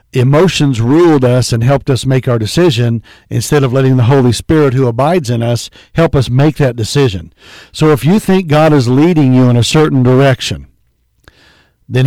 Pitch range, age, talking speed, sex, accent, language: 115-150 Hz, 60-79, 185 wpm, male, American, English